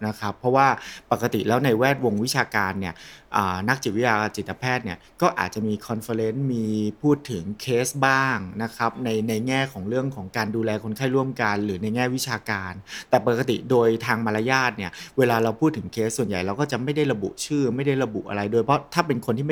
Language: Thai